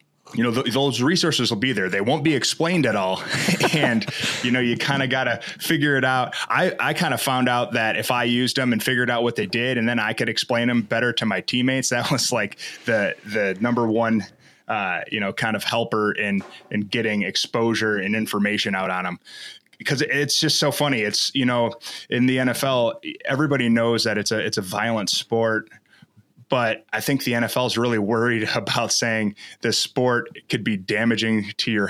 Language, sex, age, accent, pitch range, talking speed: English, male, 20-39, American, 110-130 Hz, 210 wpm